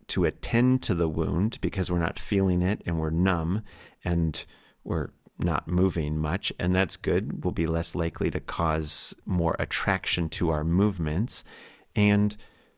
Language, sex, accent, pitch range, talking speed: English, male, American, 85-100 Hz, 155 wpm